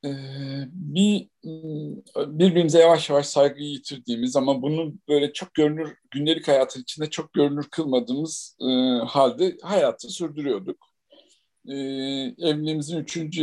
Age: 50-69